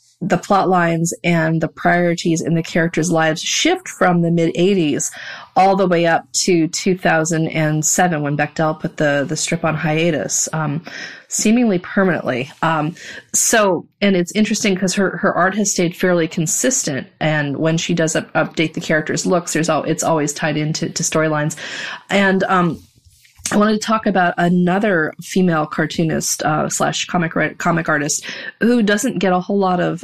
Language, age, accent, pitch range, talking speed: English, 30-49, American, 160-185 Hz, 170 wpm